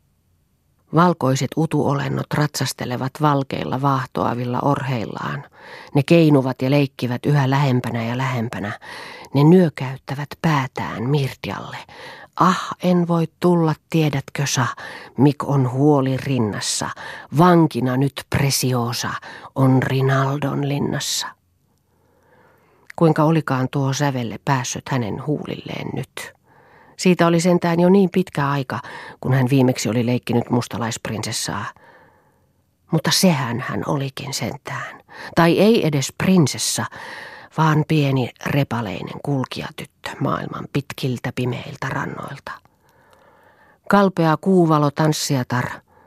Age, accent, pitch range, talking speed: 40-59, native, 125-155 Hz, 100 wpm